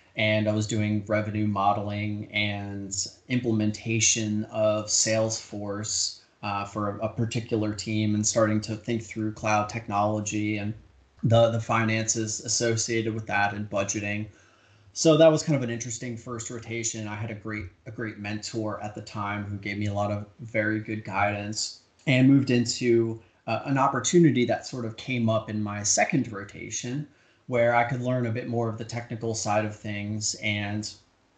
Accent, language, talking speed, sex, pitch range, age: American, English, 170 wpm, male, 105-115 Hz, 30-49